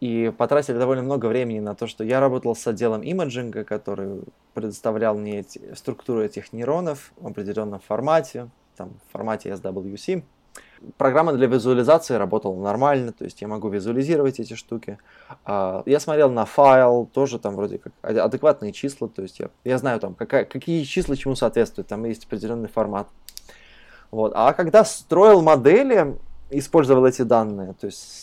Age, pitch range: 20-39, 105-140 Hz